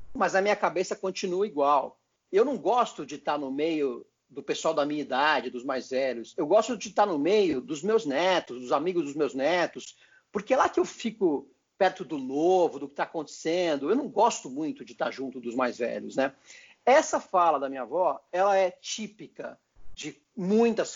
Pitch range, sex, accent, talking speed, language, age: 165-270 Hz, male, Brazilian, 200 wpm, Portuguese, 50-69